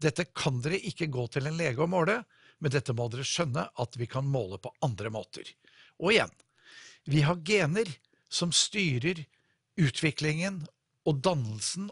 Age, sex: 60-79, male